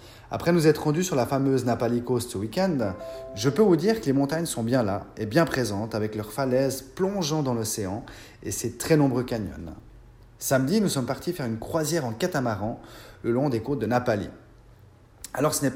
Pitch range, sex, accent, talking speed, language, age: 110-145 Hz, male, French, 200 wpm, French, 30-49